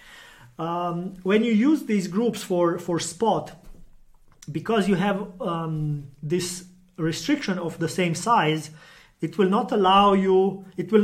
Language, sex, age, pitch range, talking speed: English, male, 30-49, 160-200 Hz, 140 wpm